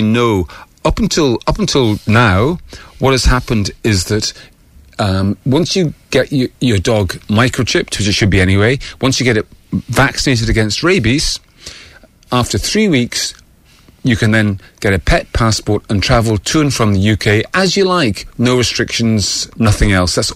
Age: 40-59